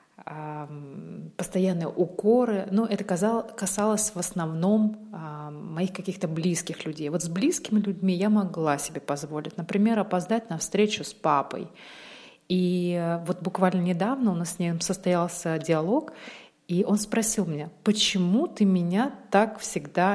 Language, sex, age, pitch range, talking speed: Russian, female, 30-49, 165-205 Hz, 135 wpm